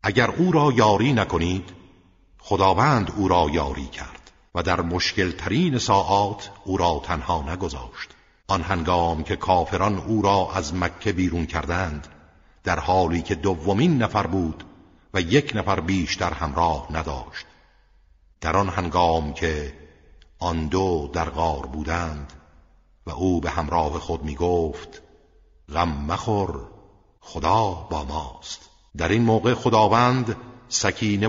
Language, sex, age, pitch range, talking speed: Persian, male, 60-79, 80-100 Hz, 130 wpm